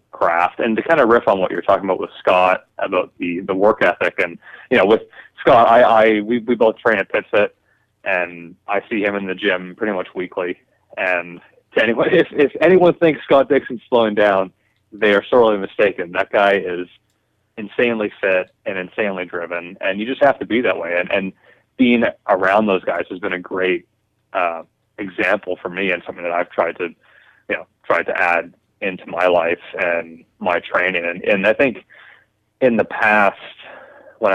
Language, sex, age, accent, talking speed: English, male, 30-49, American, 195 wpm